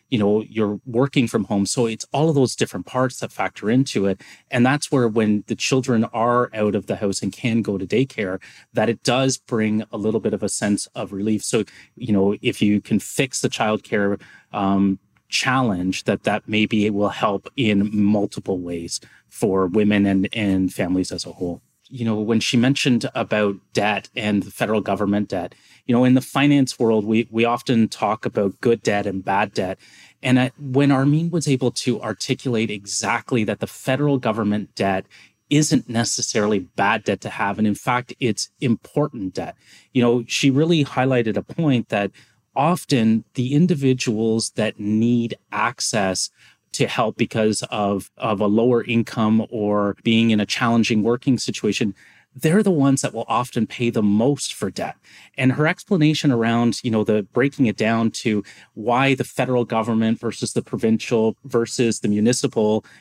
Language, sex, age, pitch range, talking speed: English, male, 30-49, 105-130 Hz, 180 wpm